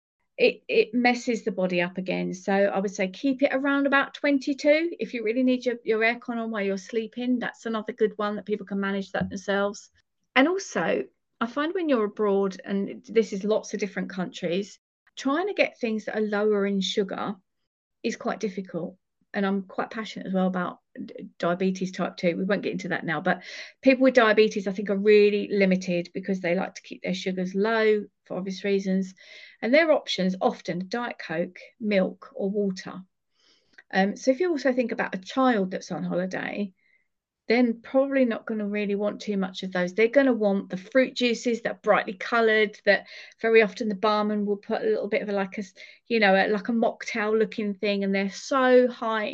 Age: 40-59